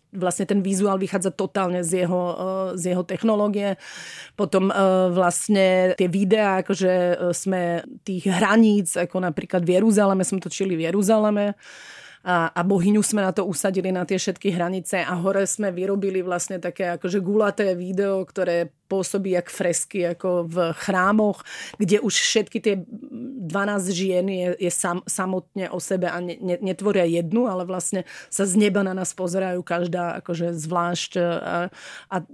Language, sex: Czech, female